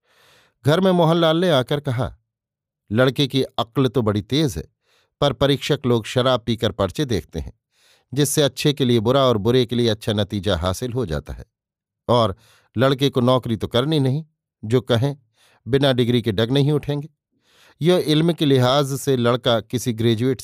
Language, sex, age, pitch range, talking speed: Hindi, male, 50-69, 115-140 Hz, 175 wpm